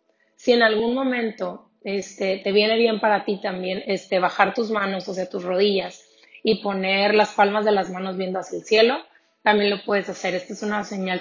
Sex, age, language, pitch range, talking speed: female, 30-49, Spanish, 195-225 Hz, 195 wpm